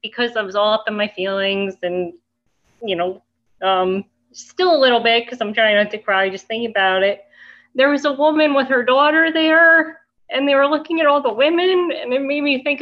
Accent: American